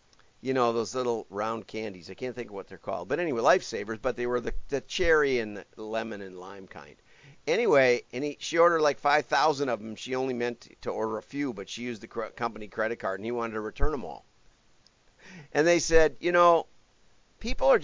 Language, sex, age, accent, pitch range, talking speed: English, male, 50-69, American, 110-145 Hz, 210 wpm